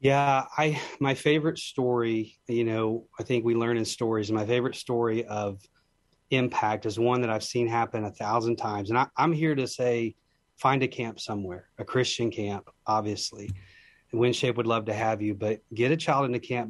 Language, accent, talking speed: English, American, 190 wpm